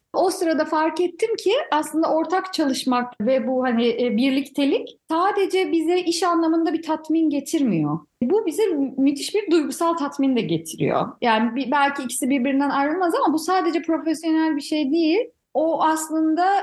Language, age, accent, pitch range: English, 30-49, Turkish, 245-320 Hz